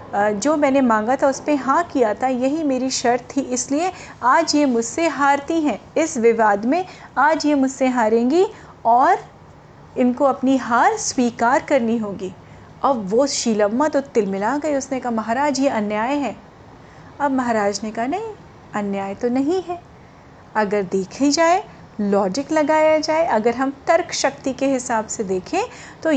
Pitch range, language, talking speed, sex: 220-290 Hz, Hindi, 160 wpm, female